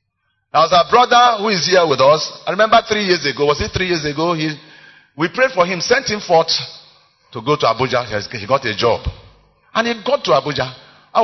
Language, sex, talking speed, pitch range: English, male, 220 wpm, 105-150 Hz